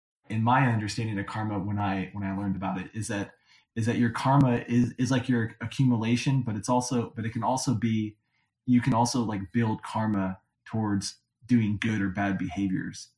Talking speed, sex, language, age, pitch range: 195 wpm, male, English, 20-39, 100-120 Hz